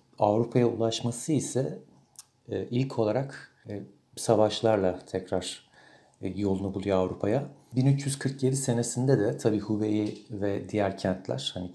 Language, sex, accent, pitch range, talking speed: Turkish, male, native, 95-125 Hz, 95 wpm